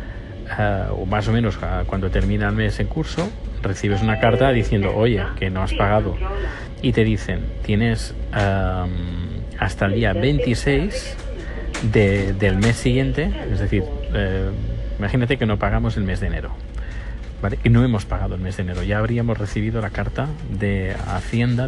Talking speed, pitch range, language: 150 wpm, 100-130 Hz, Spanish